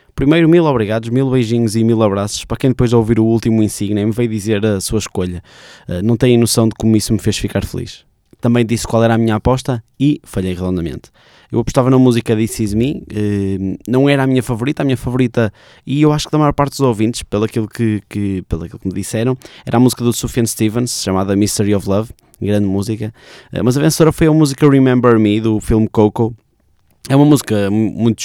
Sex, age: male, 20-39